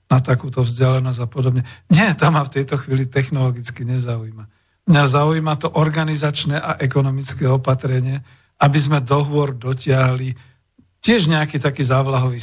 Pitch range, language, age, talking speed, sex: 120-140 Hz, Slovak, 50-69, 135 wpm, male